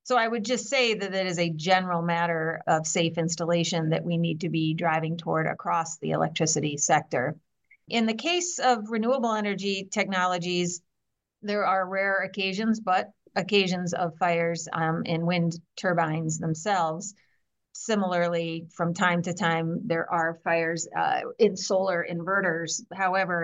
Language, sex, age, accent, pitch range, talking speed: English, female, 40-59, American, 165-200 Hz, 150 wpm